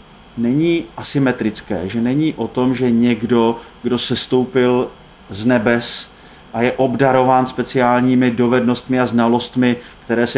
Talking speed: 125 wpm